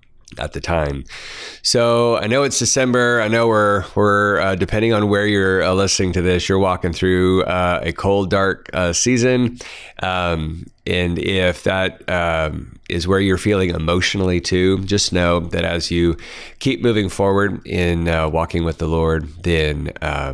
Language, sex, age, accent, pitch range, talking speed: English, male, 30-49, American, 85-105 Hz, 165 wpm